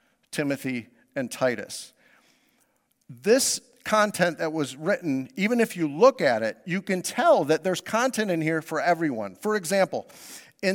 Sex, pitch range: male, 150-210 Hz